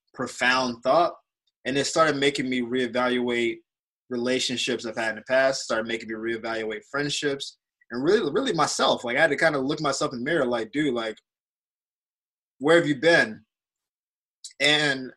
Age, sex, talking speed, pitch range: 20-39, male, 165 wpm, 120-150 Hz